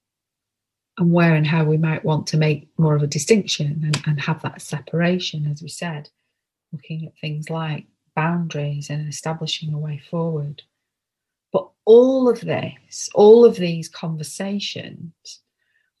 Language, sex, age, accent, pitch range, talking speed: English, female, 30-49, British, 150-170 Hz, 145 wpm